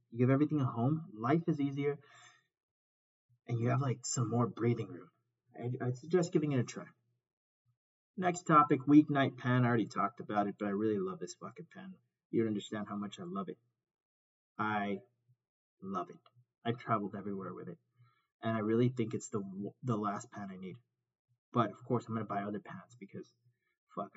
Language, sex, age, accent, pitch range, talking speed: English, male, 30-49, American, 105-140 Hz, 190 wpm